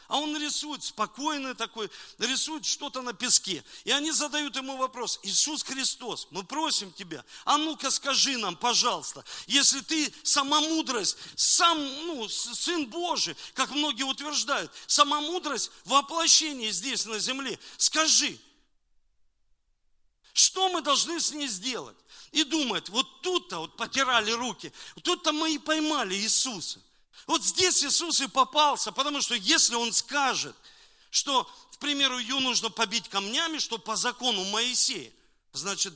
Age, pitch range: 50-69, 215-300 Hz